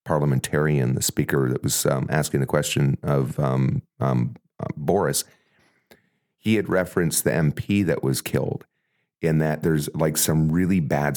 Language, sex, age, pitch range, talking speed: English, male, 40-59, 70-95 Hz, 155 wpm